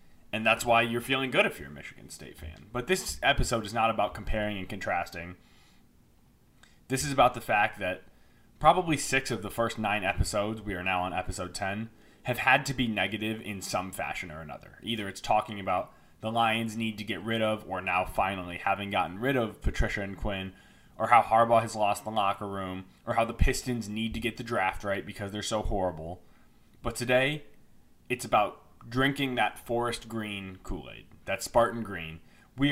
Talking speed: 195 wpm